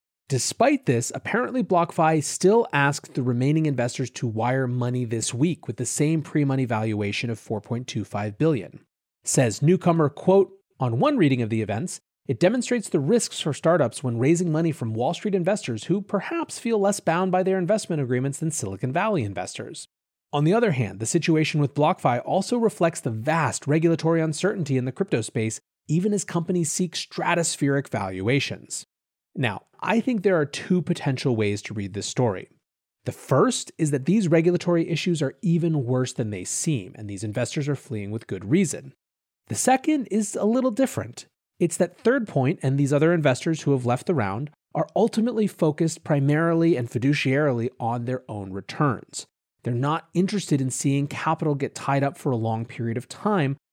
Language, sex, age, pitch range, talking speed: English, male, 30-49, 125-175 Hz, 175 wpm